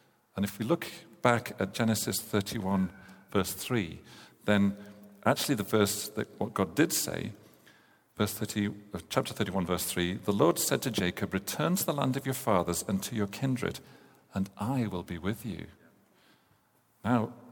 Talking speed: 165 wpm